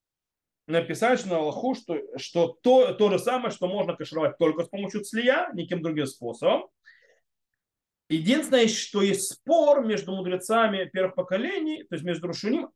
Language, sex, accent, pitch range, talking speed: Russian, male, native, 170-245 Hz, 145 wpm